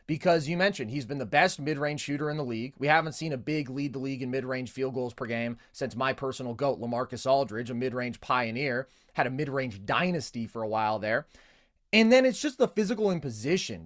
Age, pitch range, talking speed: 30-49, 130-185 Hz, 215 wpm